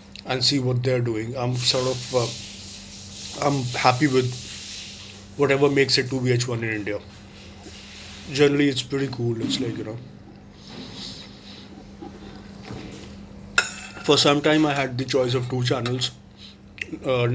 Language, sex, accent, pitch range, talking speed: English, male, Indian, 105-135 Hz, 130 wpm